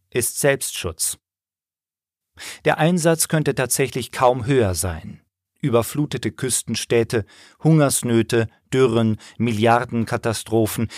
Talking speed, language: 75 wpm, German